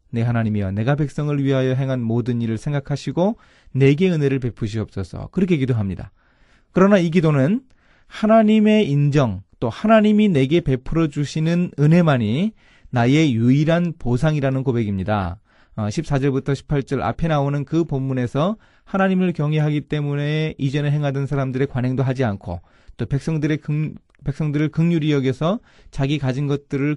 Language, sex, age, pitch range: Korean, male, 30-49, 115-155 Hz